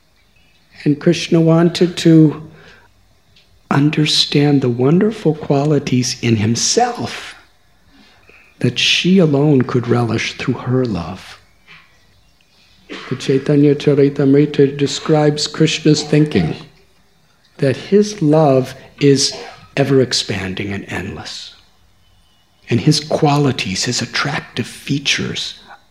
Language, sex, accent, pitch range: English, male, American, 115-150 Hz